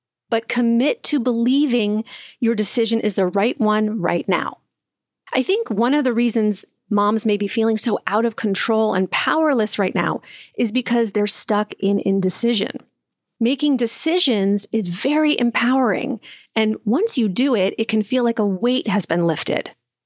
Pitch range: 205-265 Hz